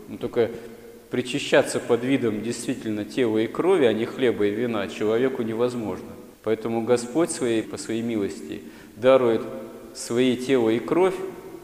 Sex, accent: male, native